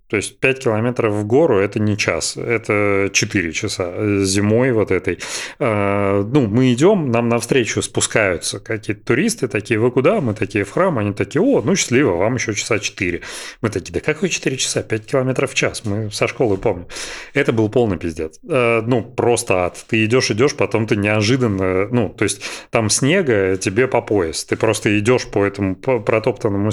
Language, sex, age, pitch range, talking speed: Russian, male, 30-49, 105-125 Hz, 185 wpm